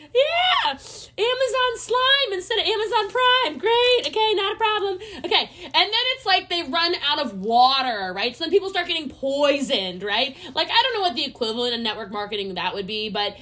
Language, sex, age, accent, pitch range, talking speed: English, female, 20-39, American, 220-370 Hz, 195 wpm